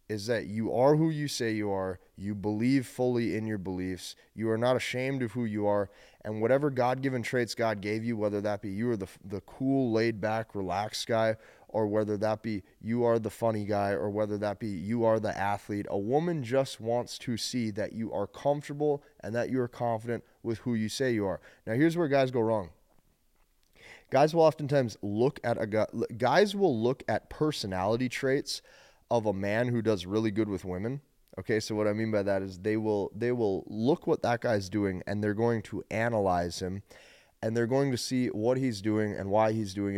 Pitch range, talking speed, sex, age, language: 105-125 Hz, 215 wpm, male, 20-39, English